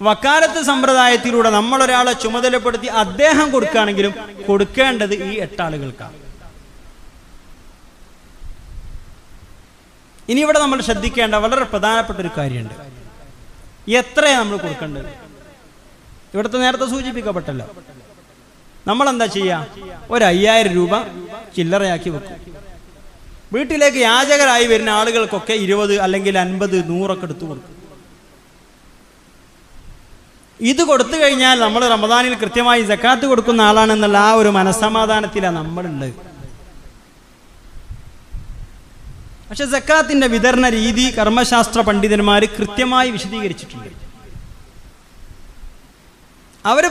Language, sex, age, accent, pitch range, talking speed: Malayalam, male, 30-49, native, 175-250 Hz, 80 wpm